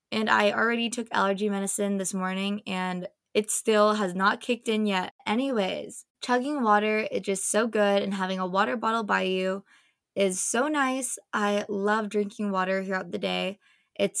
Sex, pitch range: female, 195-235 Hz